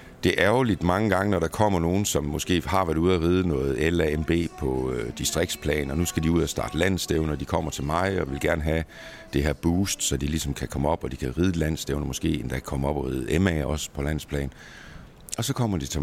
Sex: male